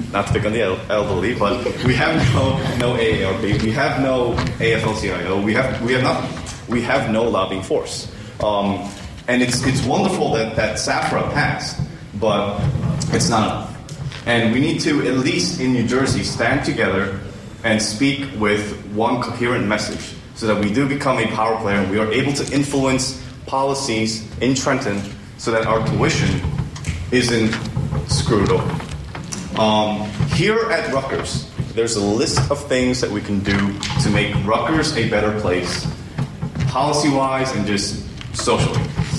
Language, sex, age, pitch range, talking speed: English, male, 30-49, 105-135 Hz, 160 wpm